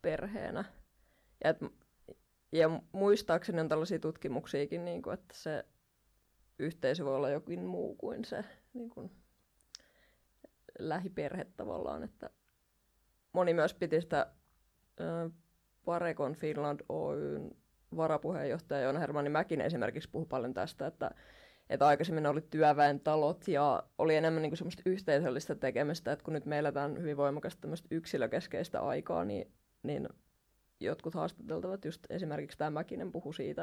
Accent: native